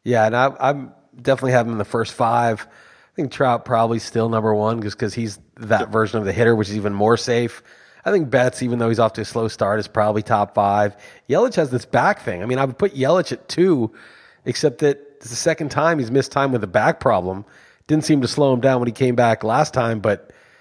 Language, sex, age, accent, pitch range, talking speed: English, male, 30-49, American, 110-130 Hz, 245 wpm